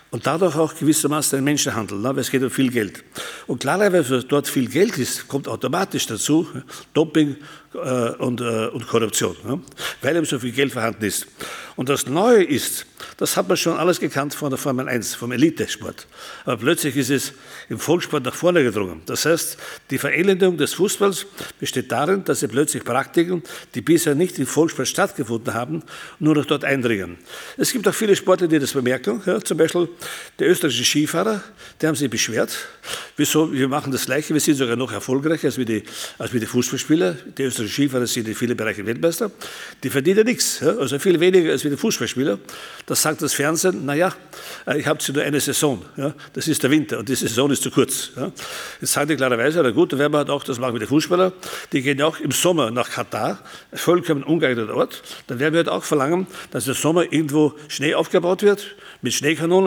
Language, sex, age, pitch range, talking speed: German, male, 60-79, 130-165 Hz, 200 wpm